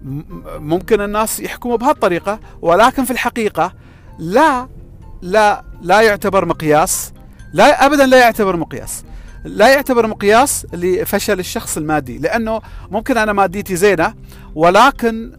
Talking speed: 115 wpm